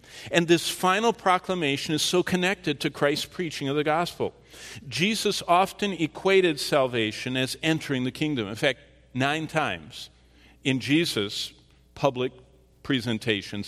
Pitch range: 125-165 Hz